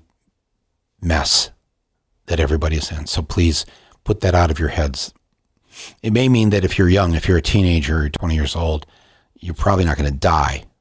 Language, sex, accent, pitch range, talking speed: English, male, American, 85-140 Hz, 180 wpm